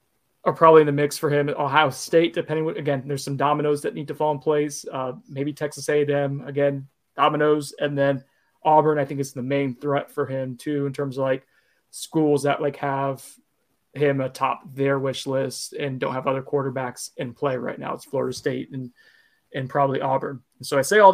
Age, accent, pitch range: 20-39, American, 140-170 Hz